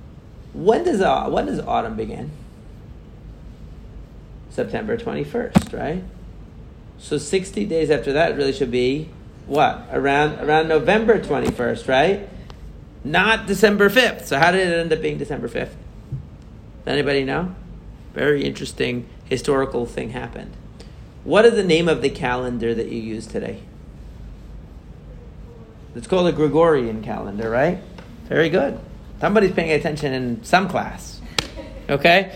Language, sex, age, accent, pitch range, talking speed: English, male, 40-59, American, 120-170 Hz, 130 wpm